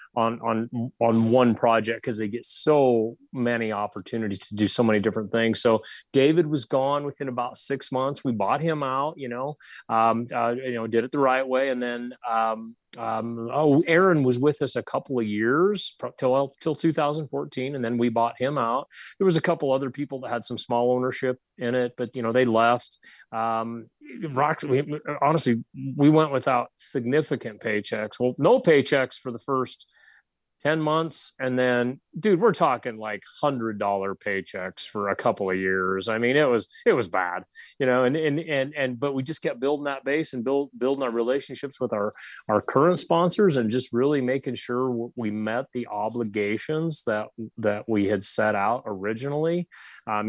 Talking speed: 185 wpm